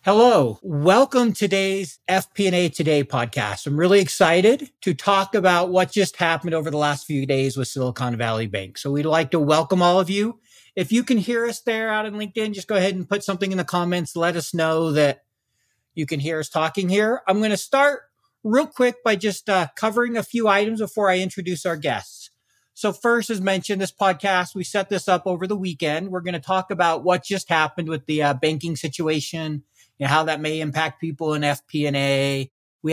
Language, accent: English, American